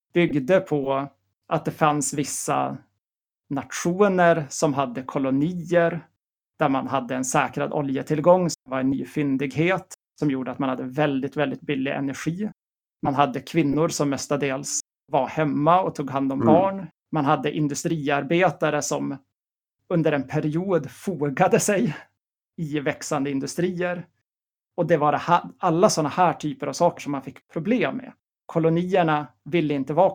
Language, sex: Swedish, male